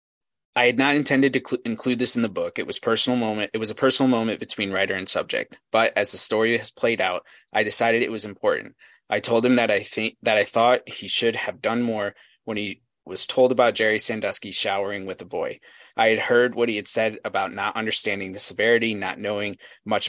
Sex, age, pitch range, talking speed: male, 20-39, 105-125 Hz, 225 wpm